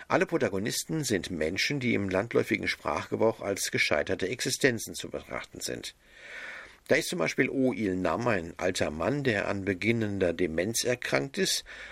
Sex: male